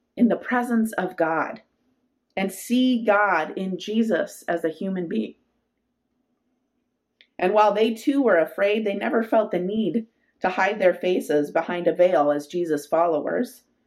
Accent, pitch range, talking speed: American, 165-230 Hz, 150 wpm